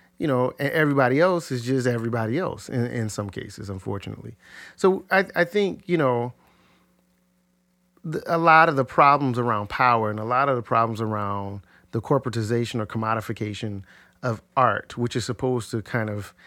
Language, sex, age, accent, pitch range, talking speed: English, male, 40-59, American, 115-175 Hz, 170 wpm